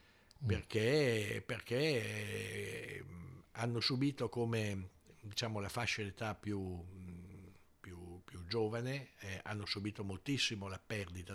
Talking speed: 105 wpm